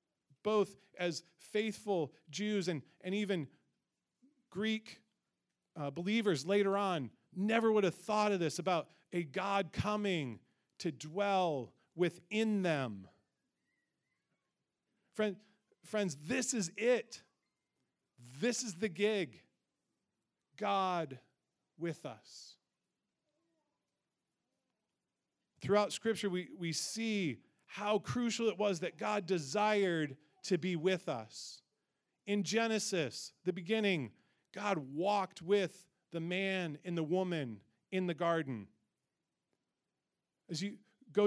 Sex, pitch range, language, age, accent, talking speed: male, 165-210 Hz, English, 40-59, American, 105 wpm